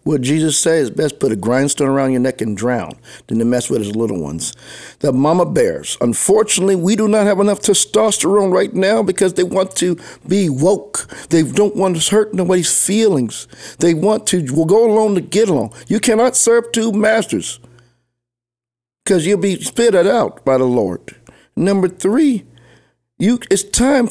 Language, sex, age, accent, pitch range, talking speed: English, male, 50-69, American, 130-205 Hz, 180 wpm